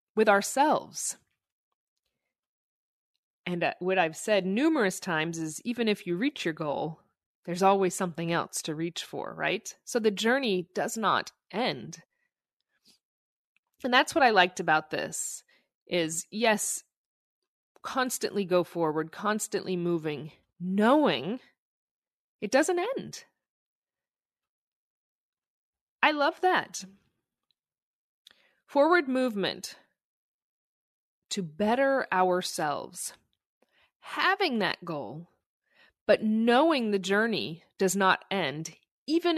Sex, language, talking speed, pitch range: female, English, 100 wpm, 175-255 Hz